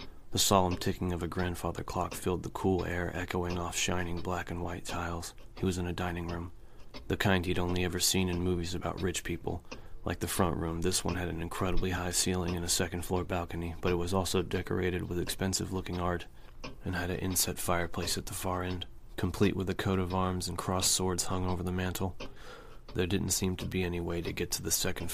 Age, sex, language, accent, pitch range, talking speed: 30-49, male, English, American, 85-95 Hz, 225 wpm